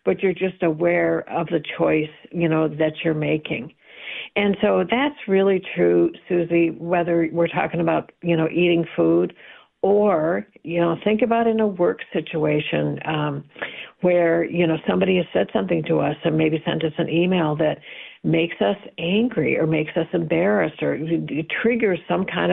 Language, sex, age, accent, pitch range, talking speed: English, female, 60-79, American, 160-200 Hz, 170 wpm